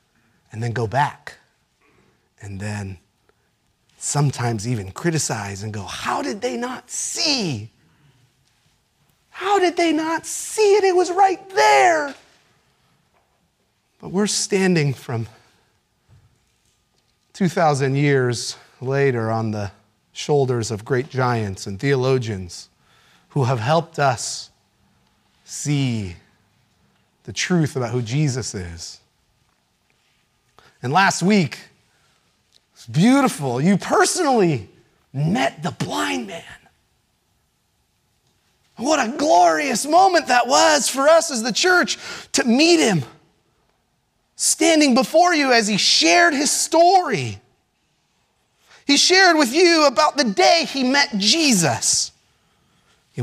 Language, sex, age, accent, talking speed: English, male, 30-49, American, 110 wpm